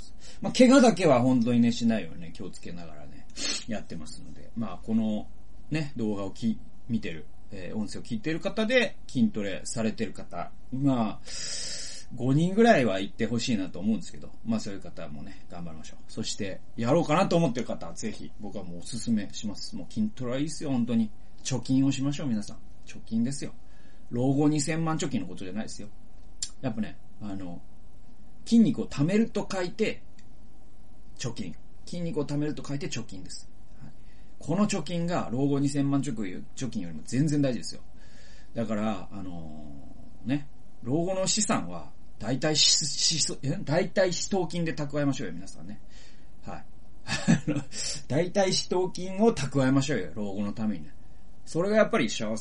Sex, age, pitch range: male, 30-49, 105-160 Hz